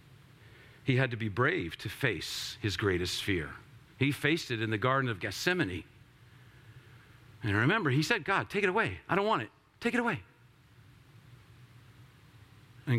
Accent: American